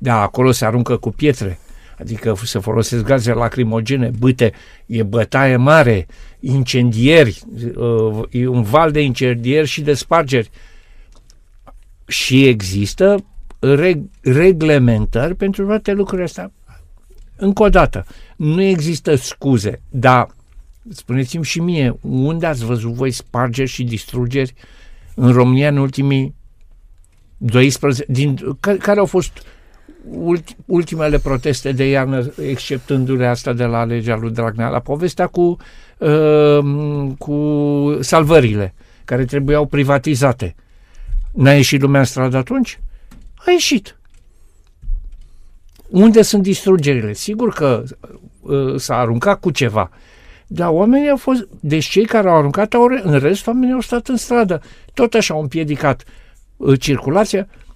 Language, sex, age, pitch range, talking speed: Romanian, male, 60-79, 115-165 Hz, 120 wpm